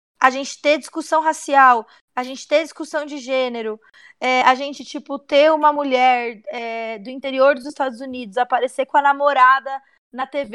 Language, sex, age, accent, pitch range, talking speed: Portuguese, female, 20-39, Brazilian, 255-300 Hz, 160 wpm